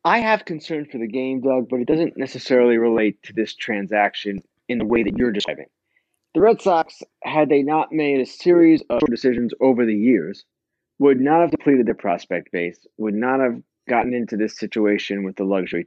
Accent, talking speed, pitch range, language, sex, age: American, 195 wpm, 125-175 Hz, English, male, 30-49